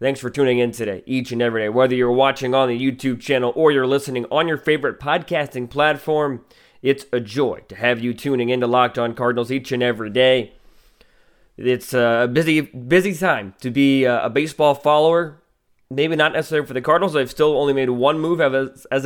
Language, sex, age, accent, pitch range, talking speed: English, male, 20-39, American, 120-140 Hz, 195 wpm